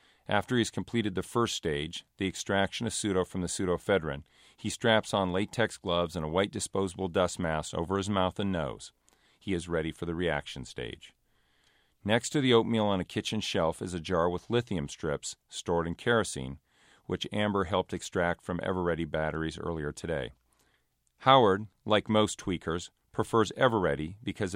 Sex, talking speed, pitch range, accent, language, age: male, 170 wpm, 85-105 Hz, American, English, 40-59